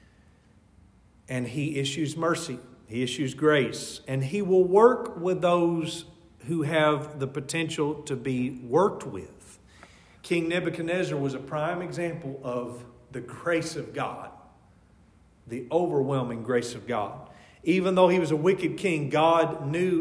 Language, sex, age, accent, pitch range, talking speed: English, male, 40-59, American, 125-170 Hz, 140 wpm